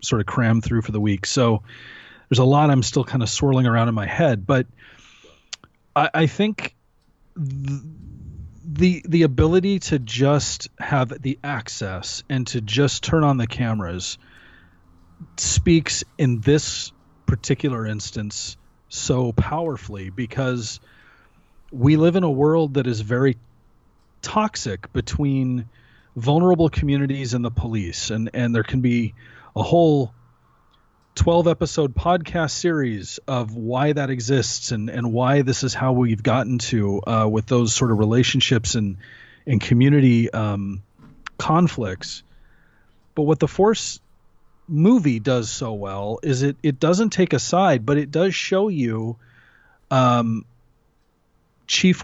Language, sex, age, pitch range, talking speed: English, male, 40-59, 110-145 Hz, 135 wpm